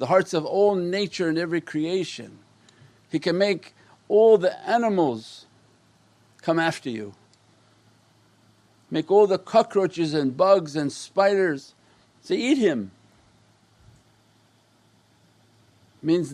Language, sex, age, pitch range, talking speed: English, male, 50-69, 115-160 Hz, 105 wpm